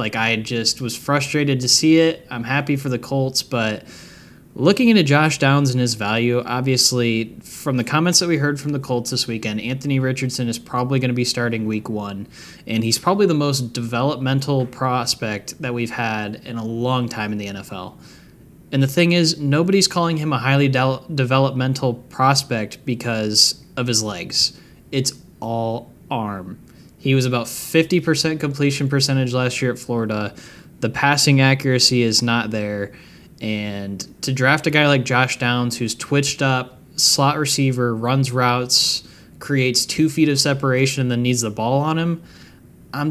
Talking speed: 170 wpm